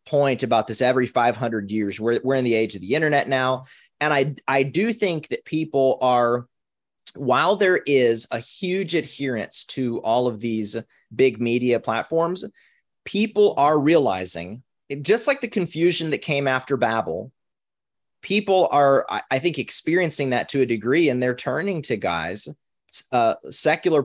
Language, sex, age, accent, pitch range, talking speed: English, male, 30-49, American, 125-175 Hz, 160 wpm